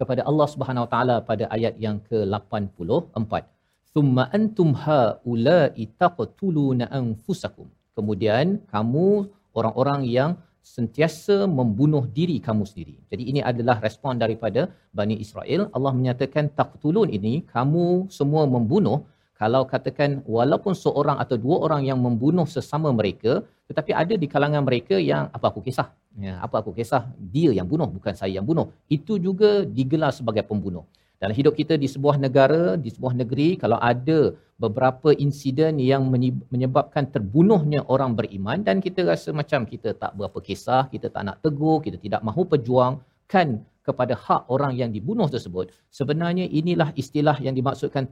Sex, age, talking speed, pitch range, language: male, 50-69, 145 wpm, 115-155 Hz, Malayalam